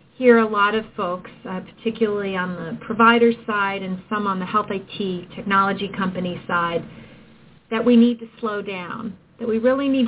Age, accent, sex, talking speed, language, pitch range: 40-59, American, female, 180 wpm, English, 190-230 Hz